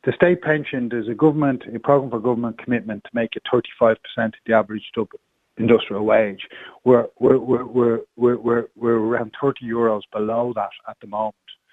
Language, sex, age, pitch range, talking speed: English, male, 40-59, 110-125 Hz, 190 wpm